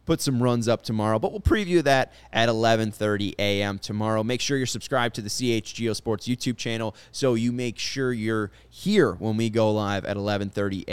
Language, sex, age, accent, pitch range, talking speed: English, male, 20-39, American, 105-130 Hz, 190 wpm